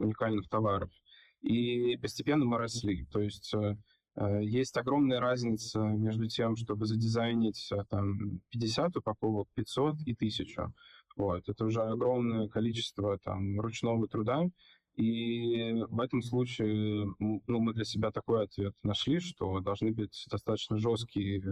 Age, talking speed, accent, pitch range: 20-39, 125 wpm, native, 105-120 Hz